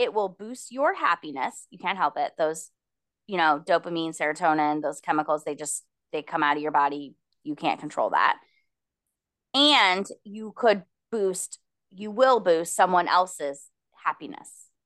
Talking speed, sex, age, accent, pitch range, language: 155 wpm, female, 20-39, American, 170-235 Hz, English